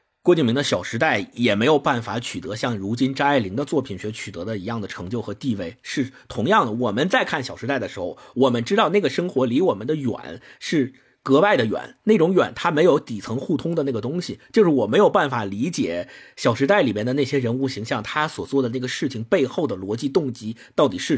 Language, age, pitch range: Chinese, 50-69, 120-190 Hz